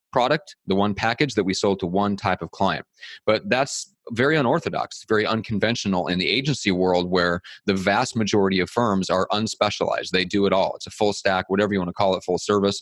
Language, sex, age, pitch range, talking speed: English, male, 30-49, 95-110 Hz, 215 wpm